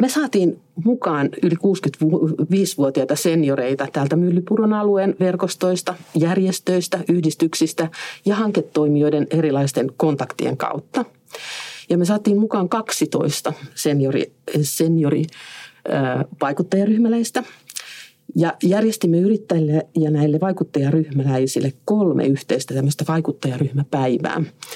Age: 50-69